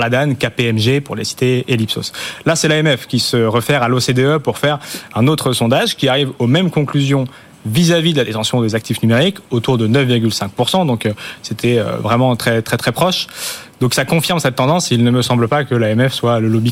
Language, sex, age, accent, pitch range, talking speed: French, male, 30-49, French, 115-140 Hz, 195 wpm